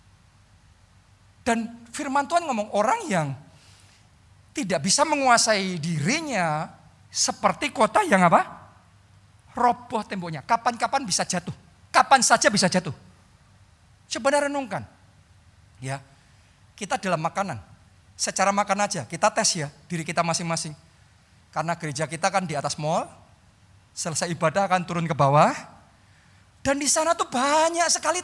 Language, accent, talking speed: Indonesian, native, 120 wpm